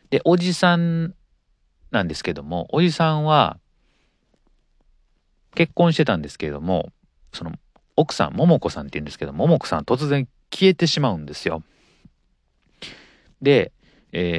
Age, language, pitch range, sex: 40-59, Japanese, 75-125 Hz, male